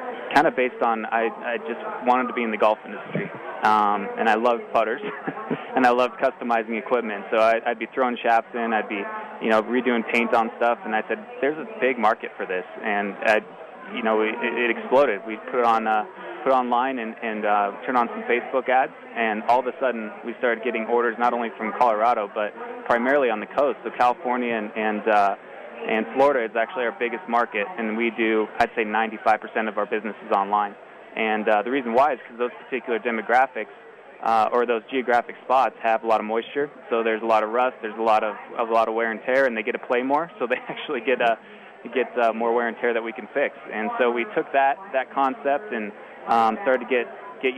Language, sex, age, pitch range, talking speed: English, male, 20-39, 110-125 Hz, 225 wpm